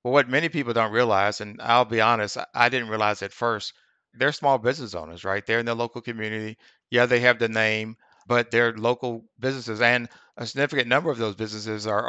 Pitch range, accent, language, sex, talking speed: 110-125 Hz, American, English, male, 210 wpm